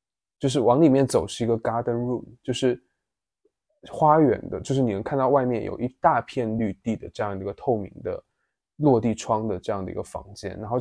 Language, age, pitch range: Chinese, 20-39, 110-140 Hz